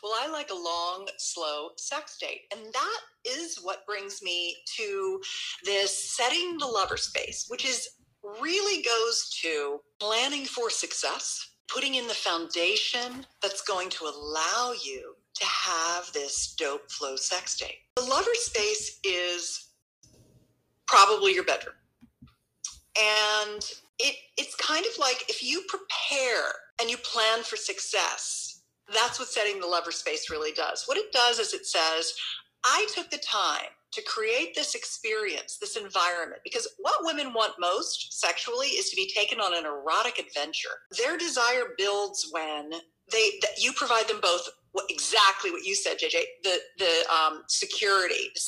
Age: 40-59